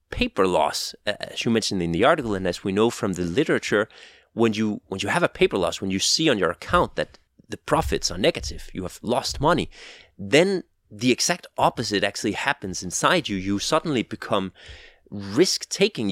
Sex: male